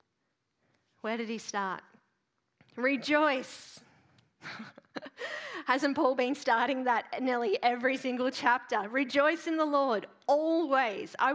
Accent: Australian